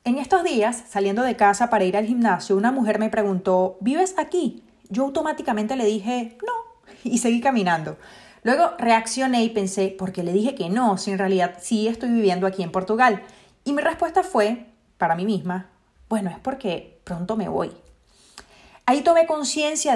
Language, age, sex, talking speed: Spanish, 30-49, female, 175 wpm